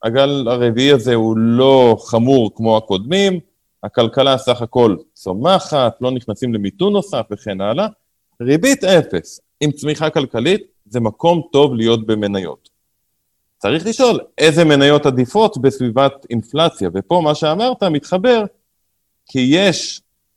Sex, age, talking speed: male, 30-49, 120 wpm